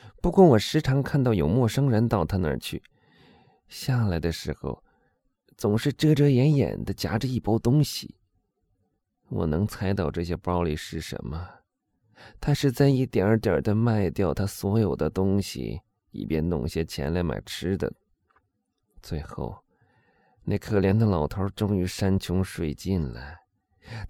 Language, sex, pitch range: Chinese, male, 85-115 Hz